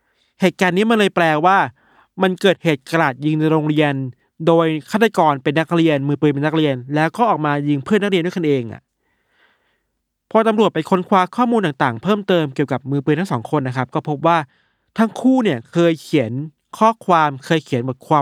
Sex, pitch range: male, 145-190 Hz